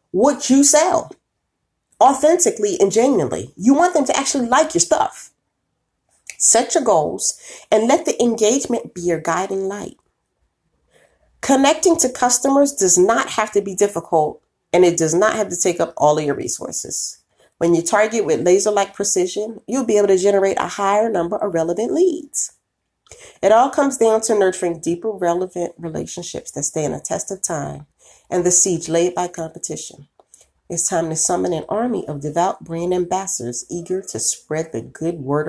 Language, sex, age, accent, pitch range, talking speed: English, female, 30-49, American, 170-255 Hz, 170 wpm